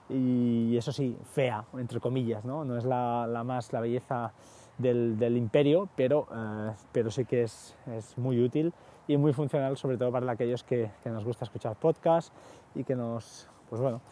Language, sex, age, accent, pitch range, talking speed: Spanish, male, 20-39, Spanish, 115-130 Hz, 170 wpm